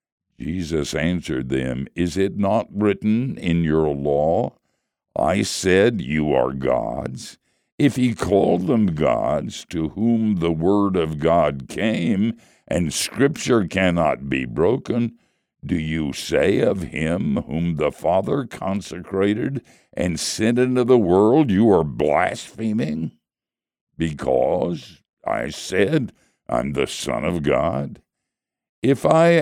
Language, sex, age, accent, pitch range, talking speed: English, male, 60-79, American, 75-115 Hz, 120 wpm